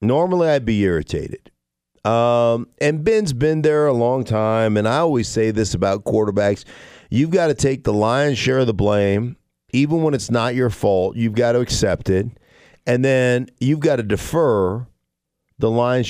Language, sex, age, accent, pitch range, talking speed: English, male, 50-69, American, 105-130 Hz, 180 wpm